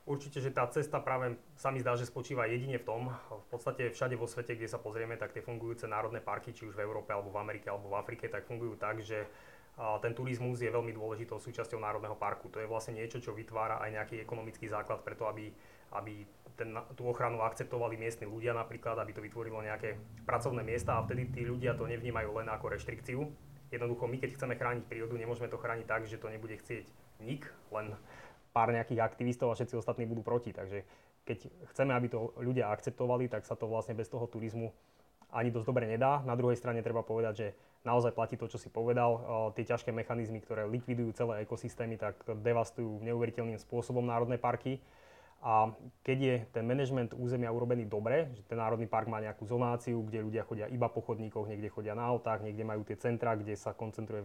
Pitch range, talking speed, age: 110-120 Hz, 200 wpm, 20-39